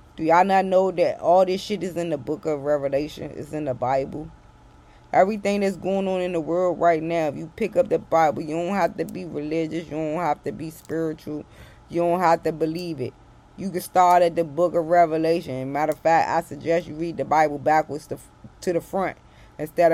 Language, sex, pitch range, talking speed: English, female, 155-175 Hz, 225 wpm